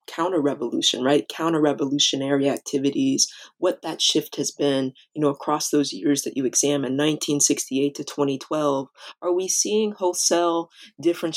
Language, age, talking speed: English, 20-39, 145 wpm